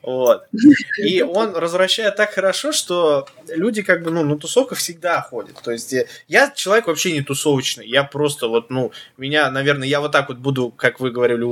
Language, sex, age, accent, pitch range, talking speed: Russian, male, 20-39, native, 140-205 Hz, 190 wpm